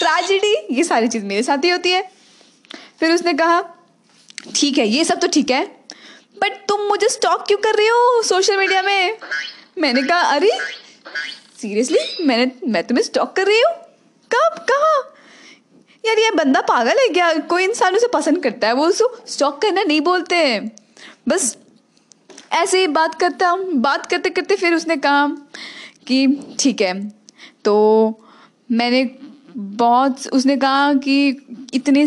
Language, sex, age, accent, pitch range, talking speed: Hindi, female, 20-39, native, 240-340 Hz, 150 wpm